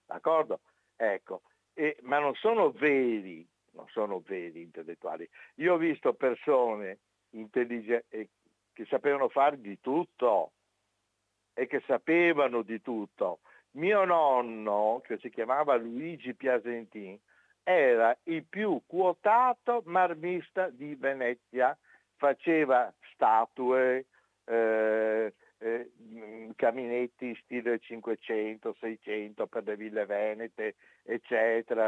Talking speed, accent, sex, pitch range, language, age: 100 wpm, native, male, 115-180 Hz, Italian, 60-79